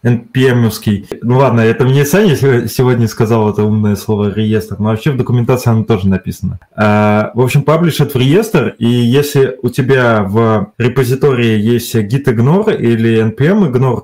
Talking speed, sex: 150 wpm, male